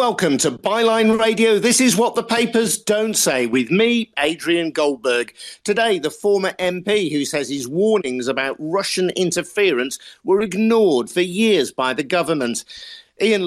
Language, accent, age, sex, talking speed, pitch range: English, British, 50-69, male, 150 wpm, 140-195 Hz